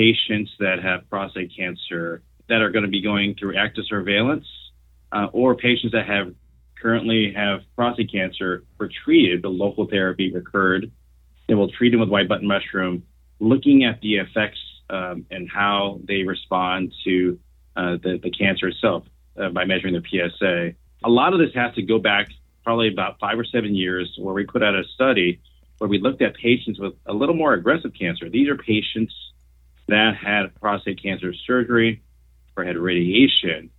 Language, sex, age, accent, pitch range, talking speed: English, male, 30-49, American, 85-105 Hz, 175 wpm